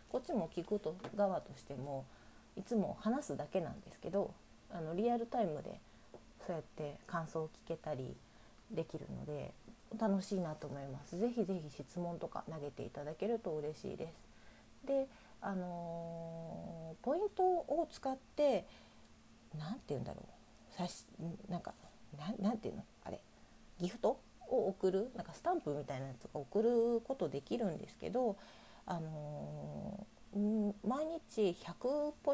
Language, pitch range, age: Japanese, 160-225 Hz, 40-59